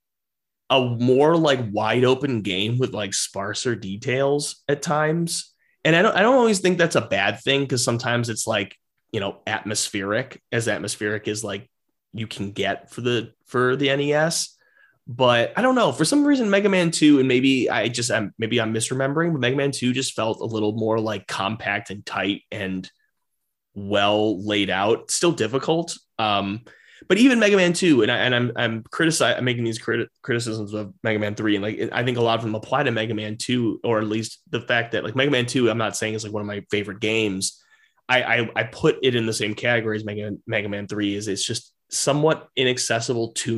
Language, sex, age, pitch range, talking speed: English, male, 30-49, 105-140 Hz, 210 wpm